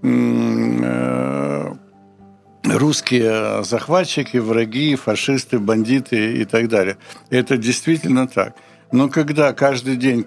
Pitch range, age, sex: 120-150 Hz, 60-79, male